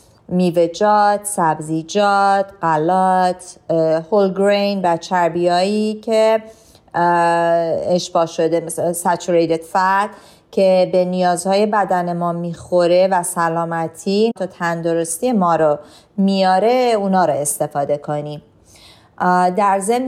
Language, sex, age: Persian, female, 30-49